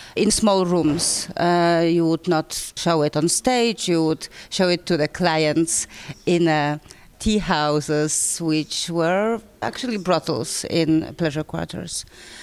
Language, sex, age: English, female, 30-49